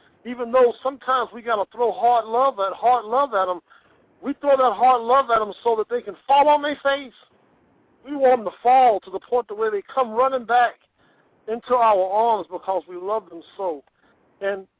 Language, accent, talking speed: English, American, 210 wpm